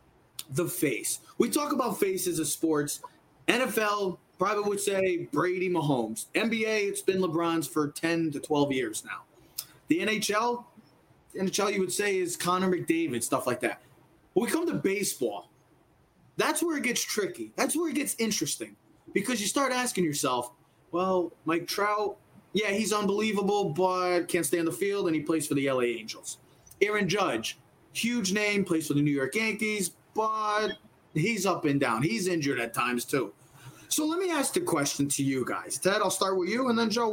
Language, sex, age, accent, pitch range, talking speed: English, male, 20-39, American, 155-235 Hz, 185 wpm